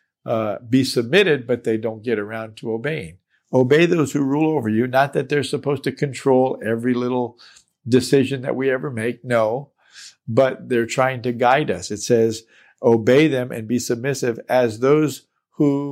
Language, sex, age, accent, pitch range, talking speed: English, male, 50-69, American, 120-145 Hz, 175 wpm